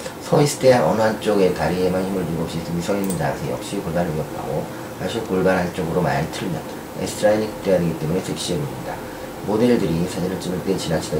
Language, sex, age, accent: Korean, male, 40-59, native